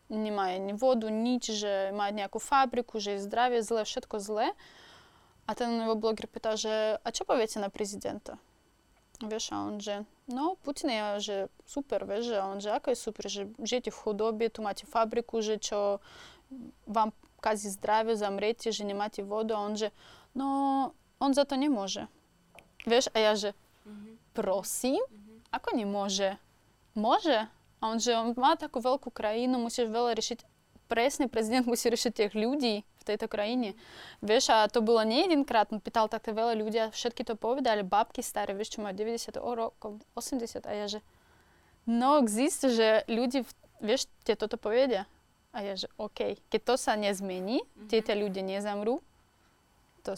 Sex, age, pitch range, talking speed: female, 20-39, 210-245 Hz, 155 wpm